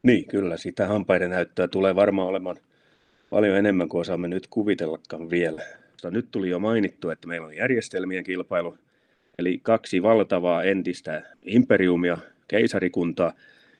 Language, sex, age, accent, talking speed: Finnish, male, 30-49, native, 135 wpm